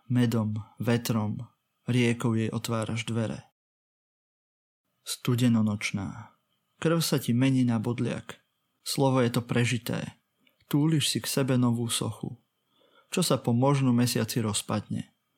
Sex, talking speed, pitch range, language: male, 115 wpm, 115-130 Hz, Slovak